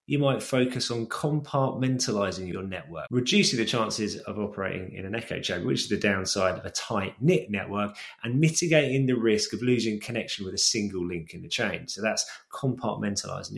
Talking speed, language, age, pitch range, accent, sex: 185 wpm, English, 20-39, 105-145 Hz, British, male